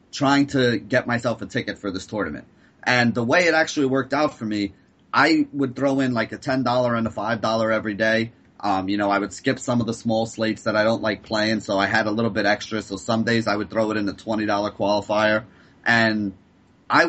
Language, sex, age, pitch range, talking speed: English, male, 30-49, 105-125 Hz, 230 wpm